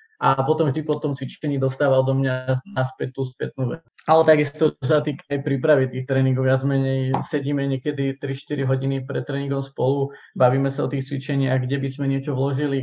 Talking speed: 190 wpm